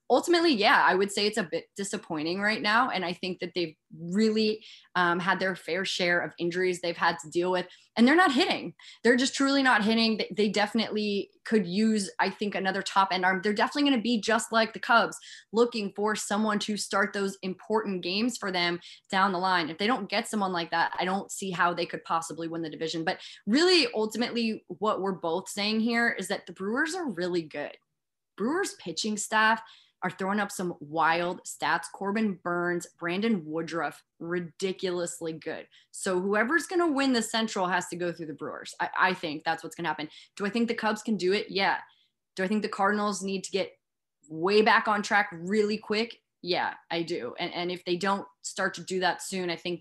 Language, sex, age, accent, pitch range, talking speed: English, female, 20-39, American, 170-215 Hz, 210 wpm